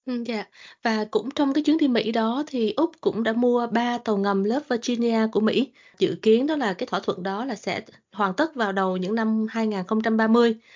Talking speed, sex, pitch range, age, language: 220 wpm, female, 195-235 Hz, 20-39, Vietnamese